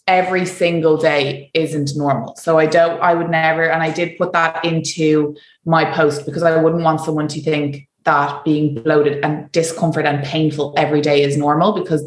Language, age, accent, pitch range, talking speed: English, 20-39, Irish, 150-180 Hz, 190 wpm